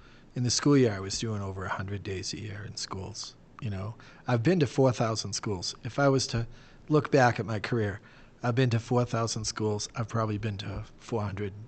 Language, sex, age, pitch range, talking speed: English, male, 40-59, 105-125 Hz, 205 wpm